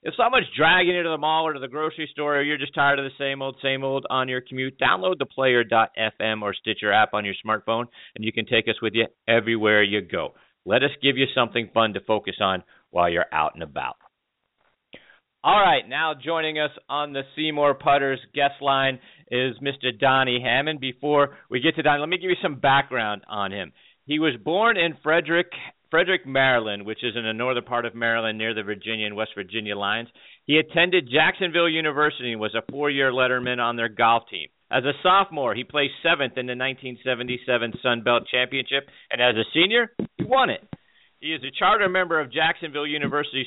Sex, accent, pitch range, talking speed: male, American, 115-150 Hz, 205 wpm